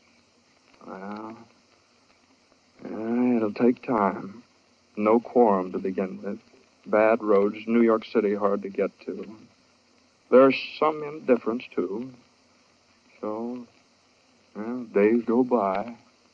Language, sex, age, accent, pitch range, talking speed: English, male, 60-79, American, 110-140 Hz, 100 wpm